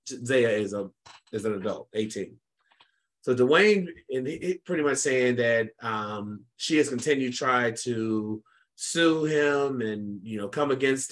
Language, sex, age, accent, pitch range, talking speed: English, male, 30-49, American, 110-125 Hz, 155 wpm